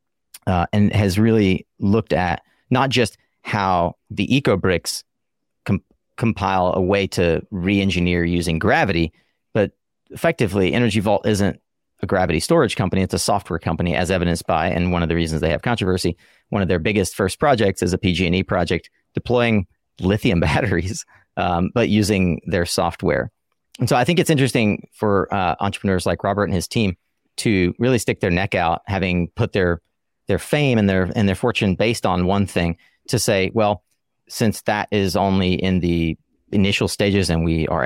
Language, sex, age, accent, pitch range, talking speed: English, male, 30-49, American, 85-105 Hz, 175 wpm